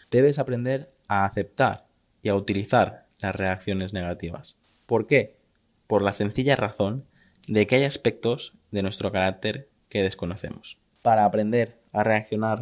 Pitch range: 100-130 Hz